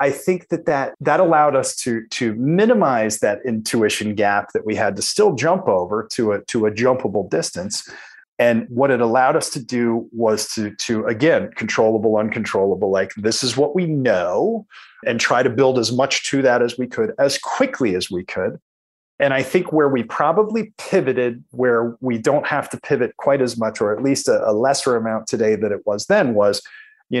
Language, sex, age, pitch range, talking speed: English, male, 30-49, 110-140 Hz, 200 wpm